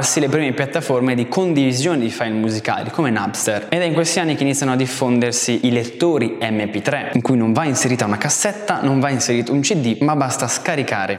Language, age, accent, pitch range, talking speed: Italian, 20-39, native, 115-150 Hz, 200 wpm